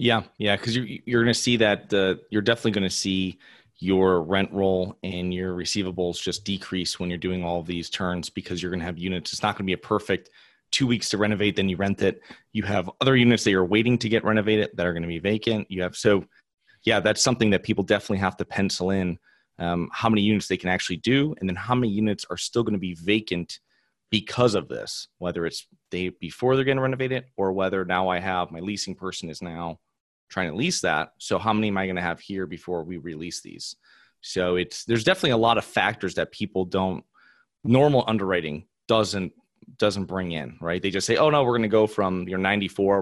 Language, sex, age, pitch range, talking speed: English, male, 30-49, 90-110 Hz, 235 wpm